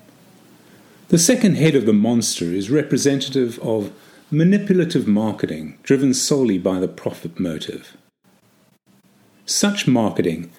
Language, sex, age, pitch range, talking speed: English, male, 50-69, 110-175 Hz, 110 wpm